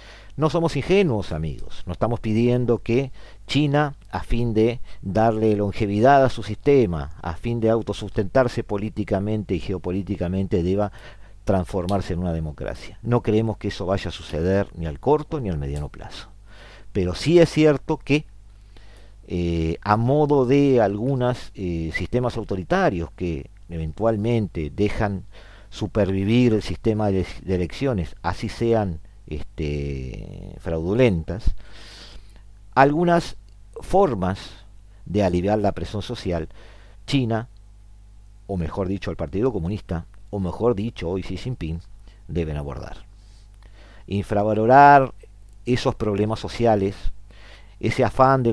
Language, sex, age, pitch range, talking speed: Spanish, male, 50-69, 95-115 Hz, 120 wpm